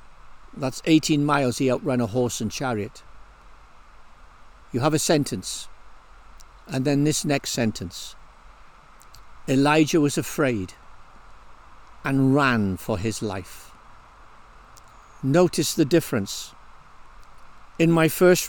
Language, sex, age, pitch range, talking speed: English, male, 60-79, 120-175 Hz, 105 wpm